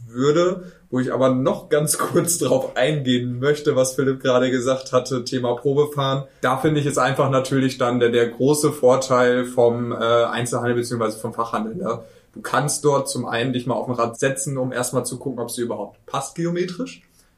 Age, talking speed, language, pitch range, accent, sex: 20-39, 190 wpm, German, 120-140 Hz, German, male